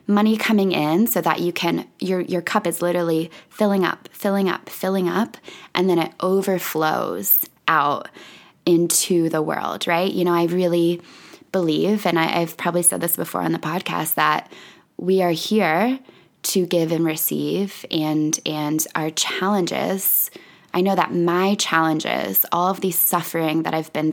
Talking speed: 160 wpm